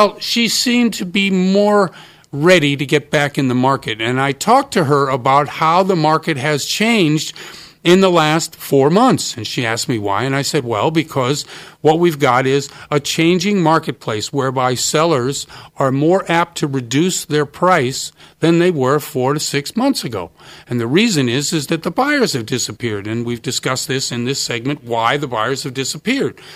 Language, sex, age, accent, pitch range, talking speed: English, male, 50-69, American, 145-195 Hz, 190 wpm